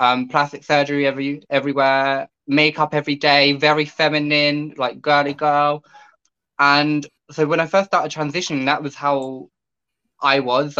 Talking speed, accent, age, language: 140 wpm, British, 10-29, English